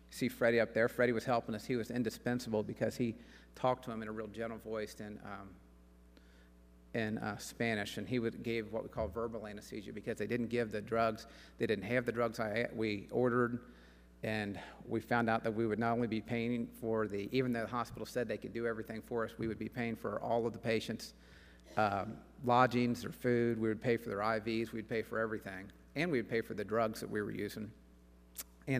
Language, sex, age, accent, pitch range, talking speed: English, male, 40-59, American, 105-120 Hz, 225 wpm